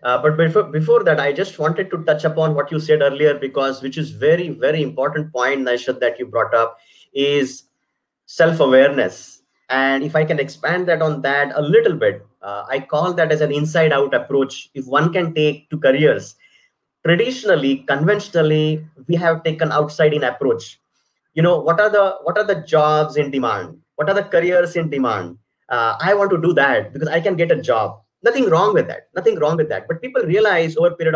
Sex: male